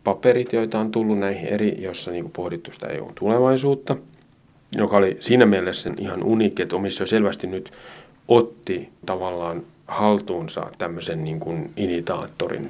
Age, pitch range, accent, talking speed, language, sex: 30-49, 95-115 Hz, native, 135 wpm, Finnish, male